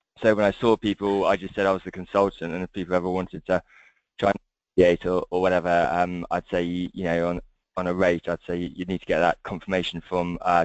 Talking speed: 250 wpm